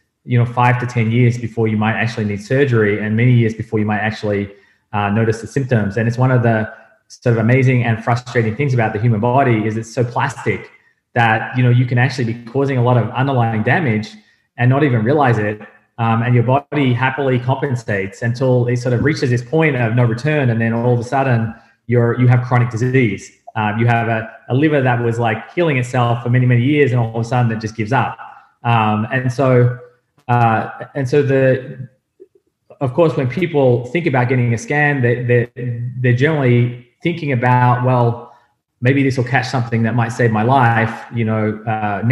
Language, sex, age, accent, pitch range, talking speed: English, male, 20-39, Australian, 115-130 Hz, 210 wpm